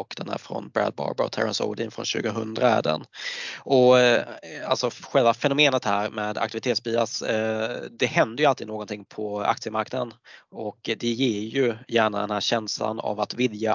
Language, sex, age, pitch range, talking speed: Swedish, male, 20-39, 110-120 Hz, 165 wpm